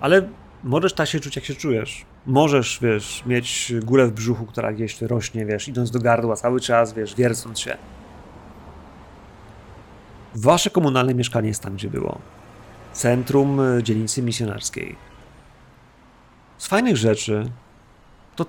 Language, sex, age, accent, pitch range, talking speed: Polish, male, 30-49, native, 110-130 Hz, 130 wpm